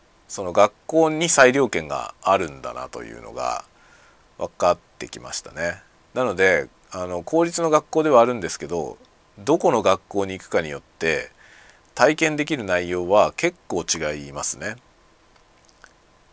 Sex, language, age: male, Japanese, 40-59